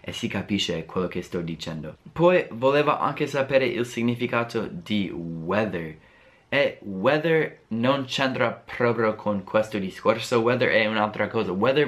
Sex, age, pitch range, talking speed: male, 20-39, 100-125 Hz, 140 wpm